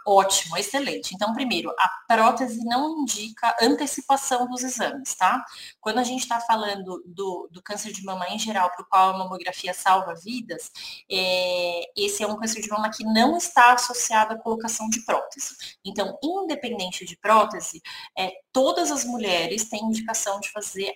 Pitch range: 190-240 Hz